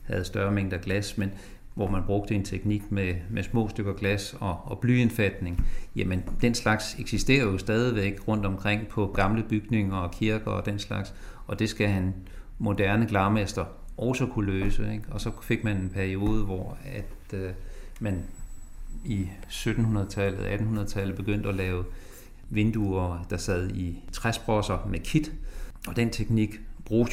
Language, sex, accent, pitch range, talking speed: Danish, male, native, 95-110 Hz, 160 wpm